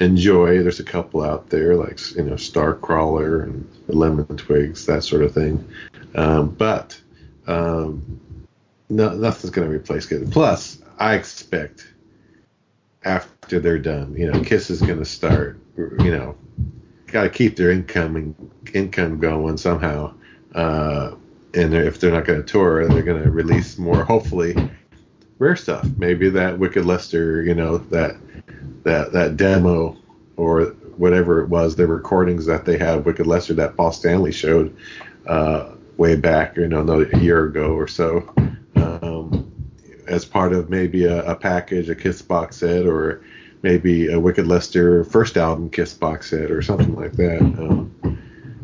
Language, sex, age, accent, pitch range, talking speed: English, male, 40-59, American, 80-95 Hz, 155 wpm